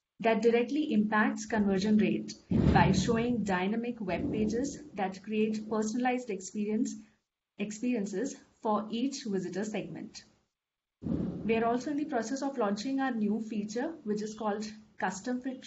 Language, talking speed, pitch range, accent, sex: English, 125 wpm, 205-255 Hz, Indian, female